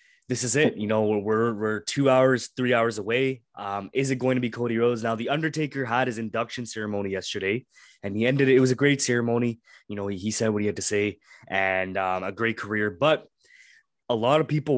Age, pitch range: 20-39, 100-125 Hz